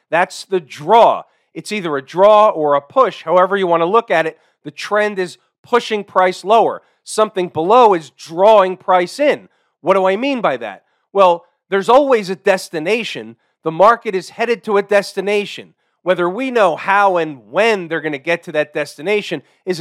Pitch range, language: 175-235 Hz, English